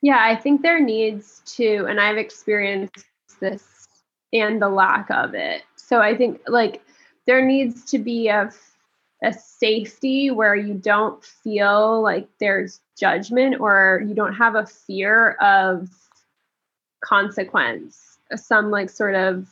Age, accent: 20-39, American